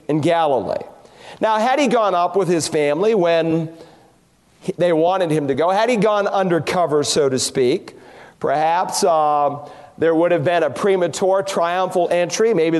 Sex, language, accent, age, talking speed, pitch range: male, English, American, 40-59, 160 wpm, 160-200 Hz